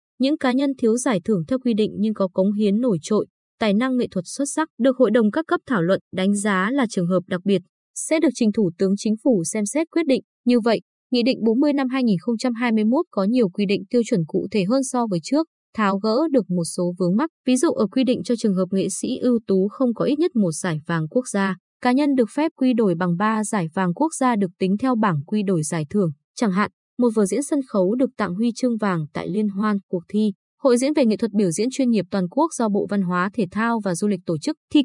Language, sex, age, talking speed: Vietnamese, female, 20-39, 265 wpm